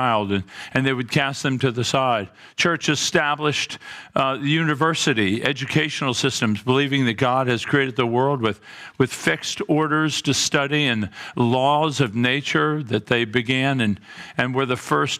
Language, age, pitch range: English, 50-69, 130-160 Hz